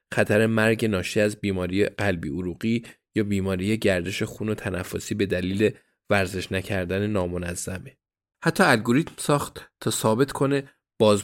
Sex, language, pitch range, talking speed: male, Persian, 100-120 Hz, 135 wpm